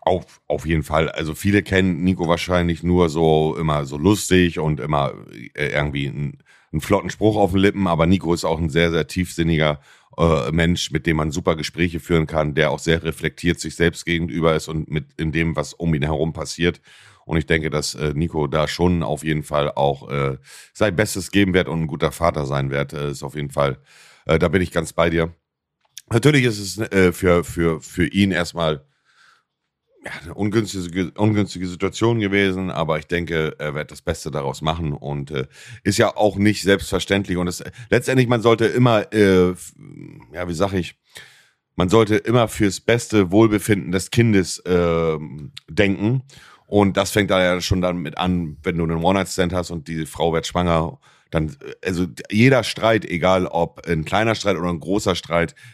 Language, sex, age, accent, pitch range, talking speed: German, male, 40-59, German, 80-95 Hz, 195 wpm